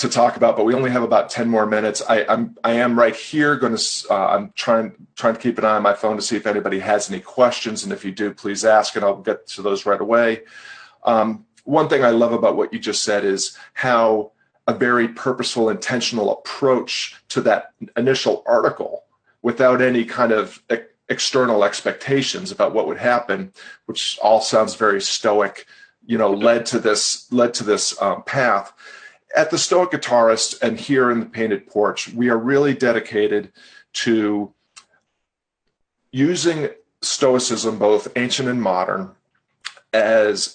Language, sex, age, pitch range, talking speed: English, male, 40-59, 110-130 Hz, 175 wpm